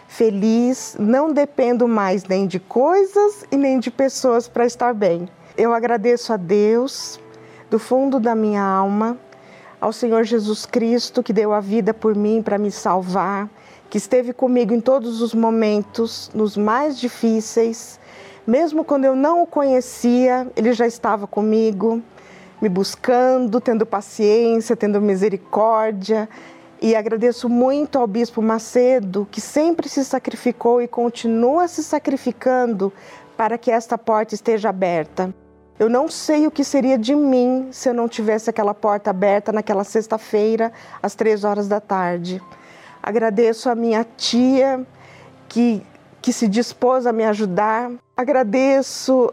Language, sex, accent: Portuguese, female, Brazilian